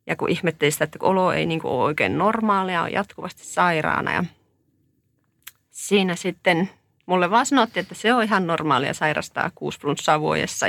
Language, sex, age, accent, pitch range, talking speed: Finnish, female, 30-49, native, 150-190 Hz, 150 wpm